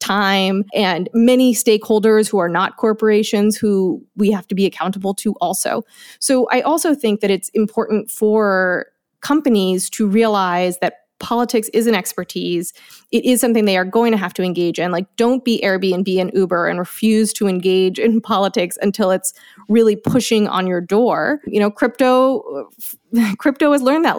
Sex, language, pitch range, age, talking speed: female, English, 190-235 Hz, 20-39, 170 wpm